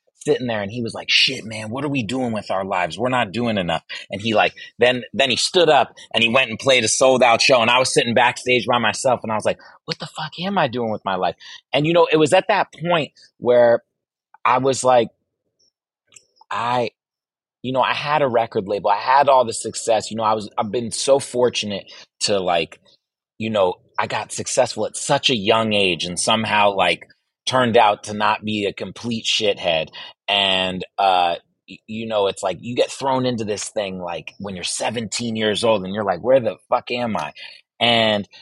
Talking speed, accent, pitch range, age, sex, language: 215 wpm, American, 100-125 Hz, 30-49, male, English